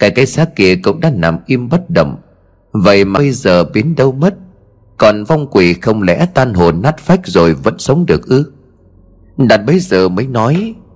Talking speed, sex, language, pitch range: 195 wpm, male, Vietnamese, 85-135 Hz